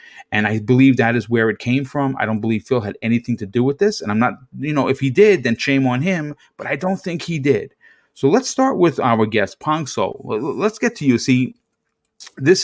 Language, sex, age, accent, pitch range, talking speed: English, male, 30-49, American, 115-145 Hz, 240 wpm